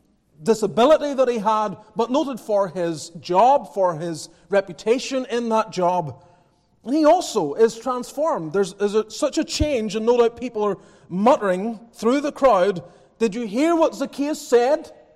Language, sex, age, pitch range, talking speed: English, male, 30-49, 180-250 Hz, 155 wpm